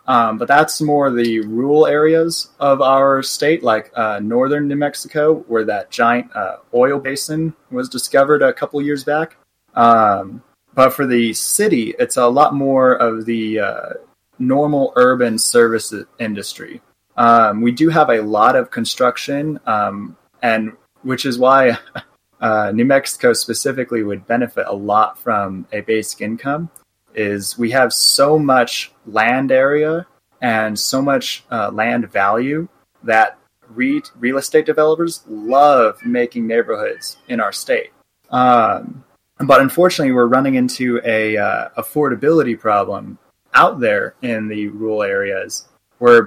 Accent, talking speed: American, 140 wpm